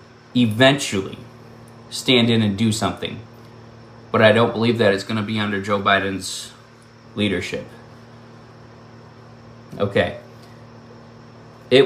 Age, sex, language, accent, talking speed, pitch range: 20-39, male, English, American, 105 wpm, 115-130 Hz